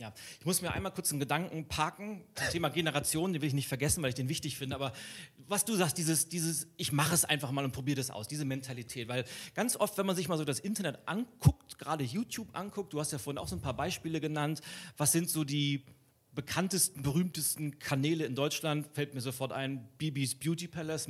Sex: male